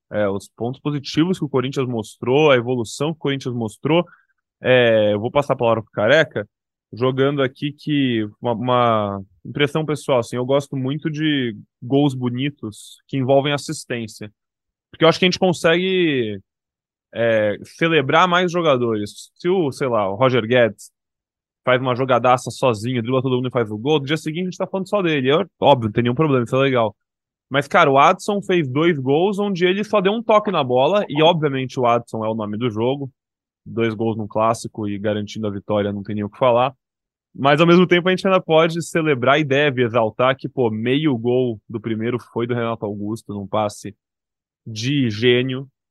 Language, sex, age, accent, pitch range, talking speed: Portuguese, male, 20-39, Brazilian, 115-145 Hz, 195 wpm